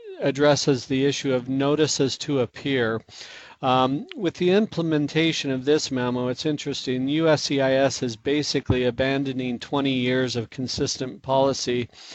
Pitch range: 130-145 Hz